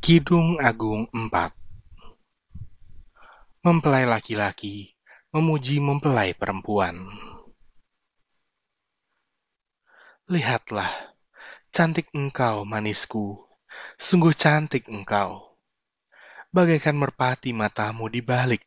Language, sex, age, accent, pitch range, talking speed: Indonesian, male, 20-39, native, 105-140 Hz, 65 wpm